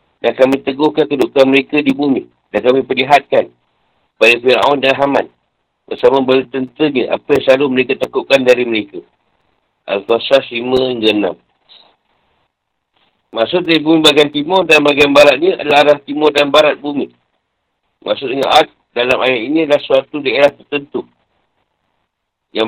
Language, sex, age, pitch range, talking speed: Malay, male, 60-79, 130-155 Hz, 130 wpm